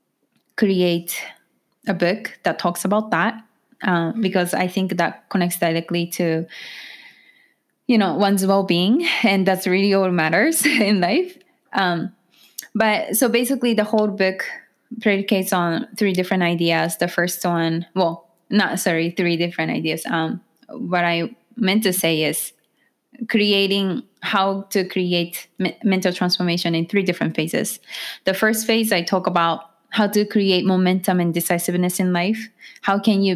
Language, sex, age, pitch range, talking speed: English, female, 20-39, 175-205 Hz, 145 wpm